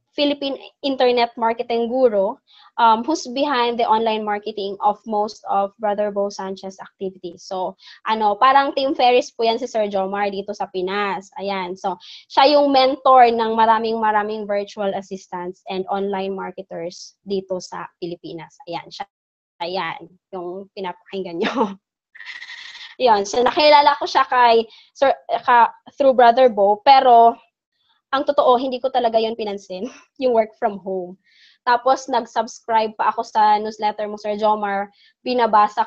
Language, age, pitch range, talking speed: English, 20-39, 205-270 Hz, 140 wpm